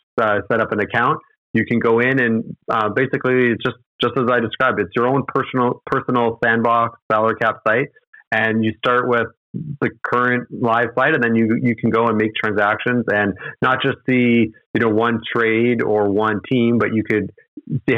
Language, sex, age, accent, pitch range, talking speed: English, male, 30-49, American, 105-125 Hz, 195 wpm